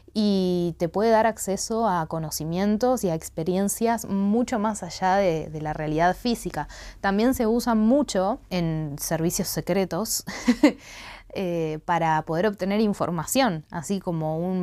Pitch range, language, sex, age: 165-215 Hz, Spanish, female, 20-39